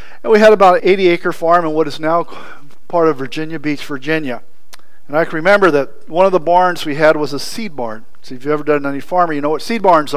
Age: 50-69